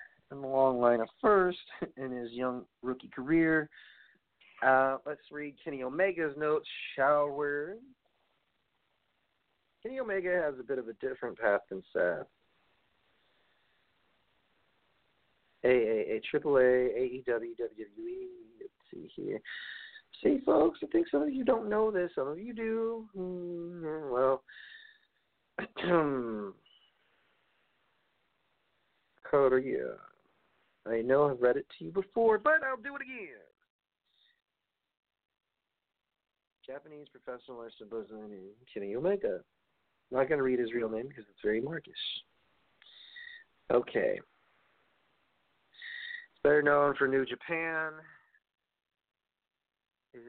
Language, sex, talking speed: English, male, 115 wpm